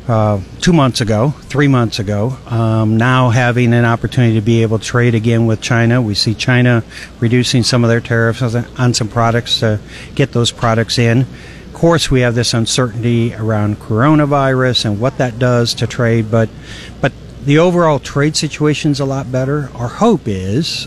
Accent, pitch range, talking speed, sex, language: American, 115-135 Hz, 180 wpm, male, English